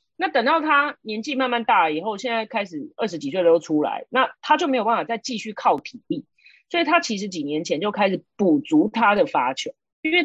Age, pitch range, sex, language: 30-49, 170-275 Hz, female, Chinese